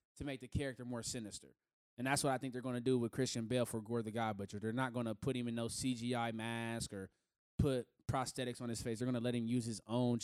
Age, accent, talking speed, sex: 20-39, American, 275 wpm, male